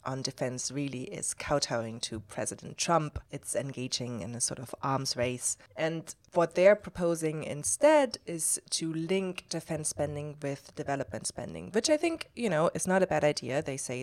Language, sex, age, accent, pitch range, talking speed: English, female, 20-39, German, 125-155 Hz, 175 wpm